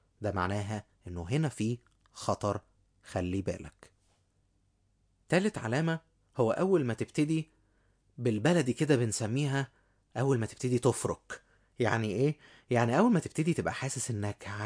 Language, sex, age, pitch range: Arabic, male, 20-39, 100-135 Hz